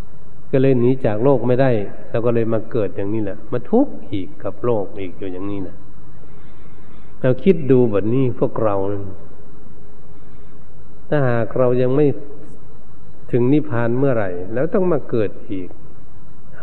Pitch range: 100-130 Hz